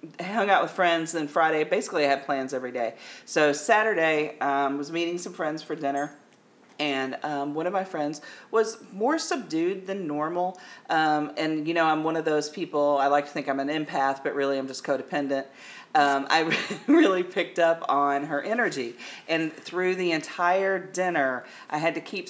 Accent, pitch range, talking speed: American, 135-165 Hz, 190 wpm